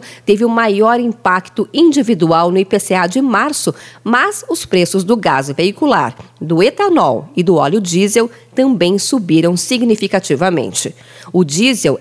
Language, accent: Portuguese, Brazilian